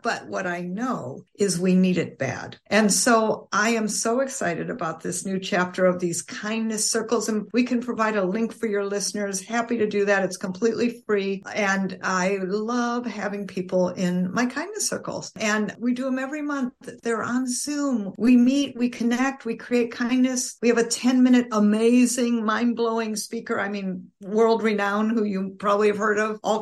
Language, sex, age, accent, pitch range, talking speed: English, female, 50-69, American, 200-245 Hz, 185 wpm